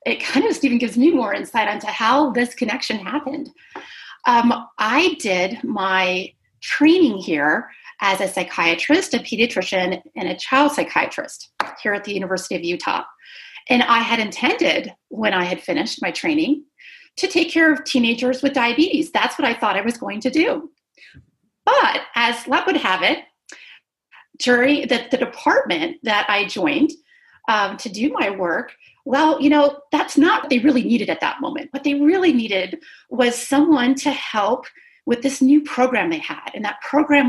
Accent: American